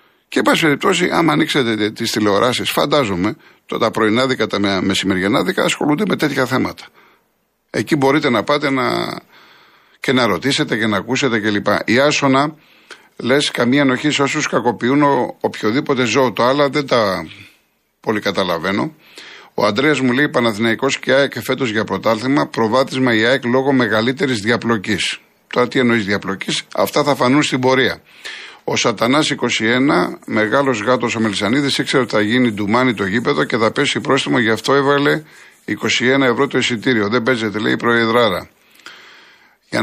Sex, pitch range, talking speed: male, 110-135 Hz, 155 wpm